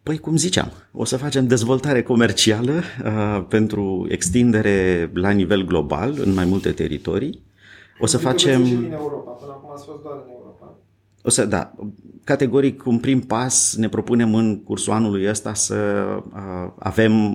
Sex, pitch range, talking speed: male, 95-120 Hz, 160 wpm